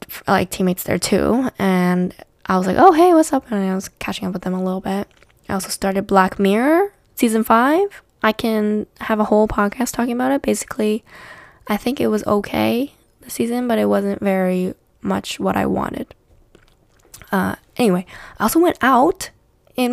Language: English